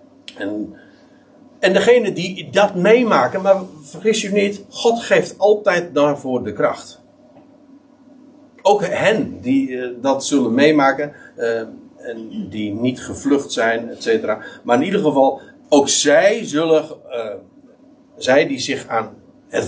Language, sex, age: Dutch, male, 50-69